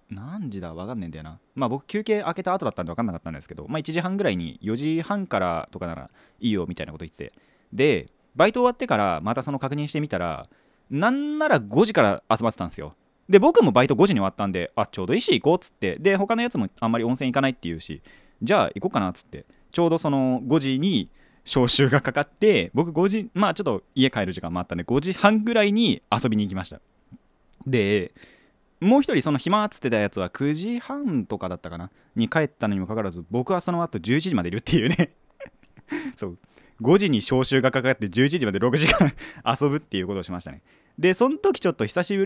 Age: 20-39